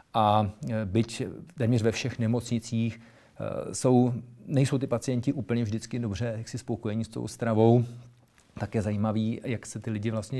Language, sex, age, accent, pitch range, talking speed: Czech, male, 40-59, native, 110-125 Hz, 155 wpm